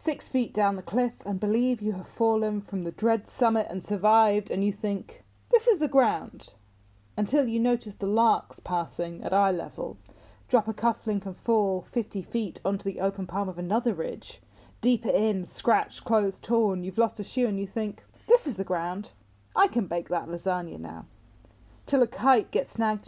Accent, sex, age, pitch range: British, female, 30-49, 190-245 Hz